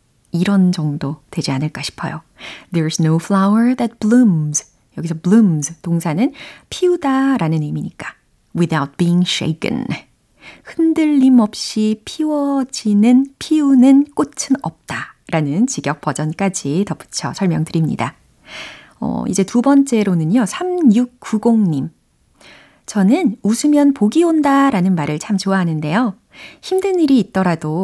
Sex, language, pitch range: female, Korean, 170-260 Hz